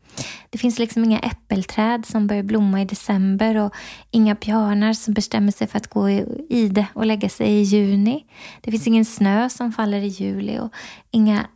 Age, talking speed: 20-39, 185 wpm